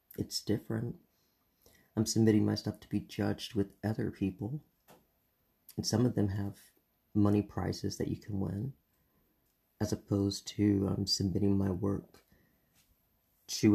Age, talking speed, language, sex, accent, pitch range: 30-49, 140 wpm, English, male, American, 100-110 Hz